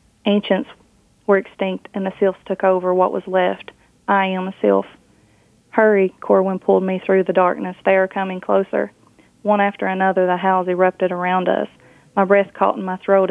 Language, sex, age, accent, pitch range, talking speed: English, female, 30-49, American, 180-195 Hz, 180 wpm